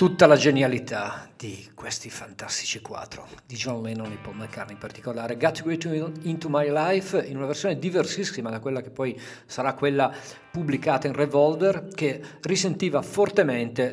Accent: native